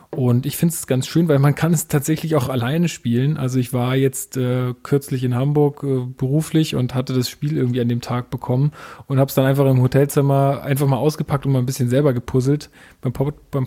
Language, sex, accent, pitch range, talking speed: German, male, German, 125-145 Hz, 225 wpm